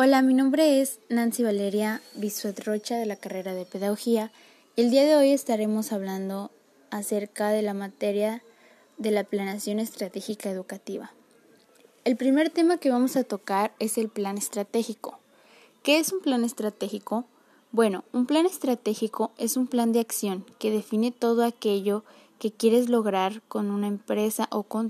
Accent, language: Mexican, Spanish